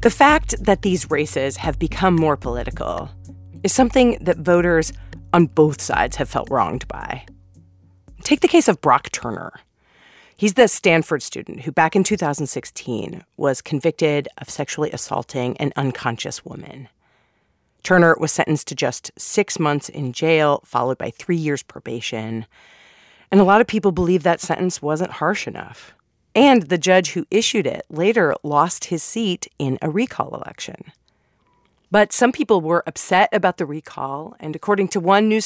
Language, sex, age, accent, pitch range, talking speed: English, female, 30-49, American, 140-195 Hz, 160 wpm